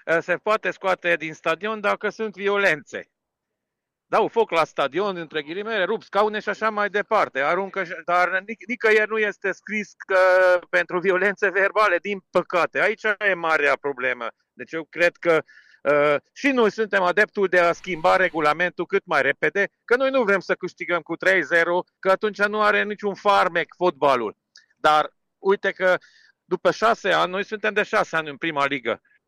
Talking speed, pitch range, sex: 160 wpm, 175-210 Hz, male